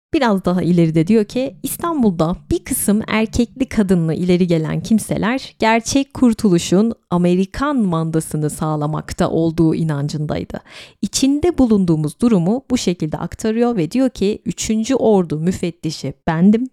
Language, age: Turkish, 30-49